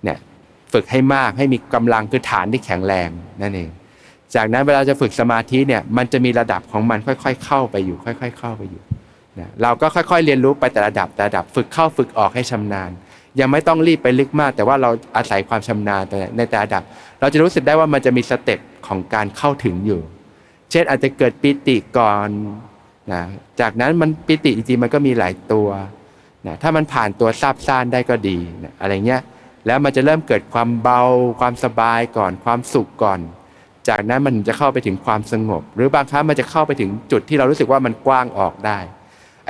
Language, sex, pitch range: Thai, male, 105-135 Hz